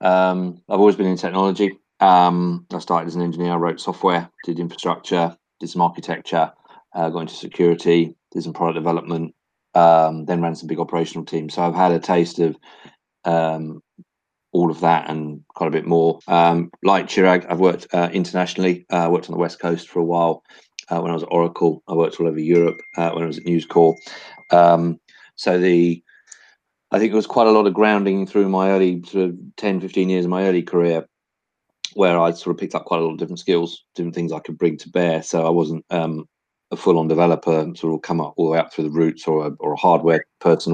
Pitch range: 80-90 Hz